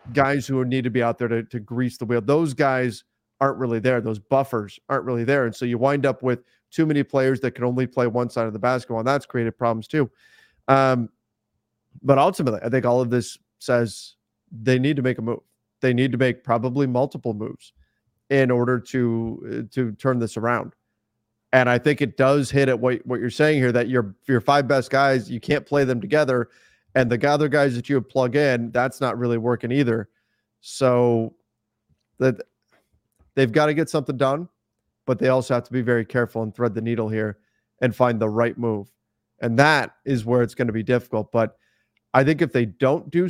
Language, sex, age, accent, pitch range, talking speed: English, male, 30-49, American, 115-140 Hz, 210 wpm